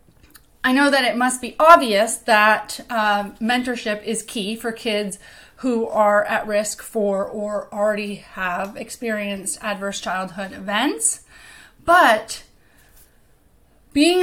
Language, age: English, 30-49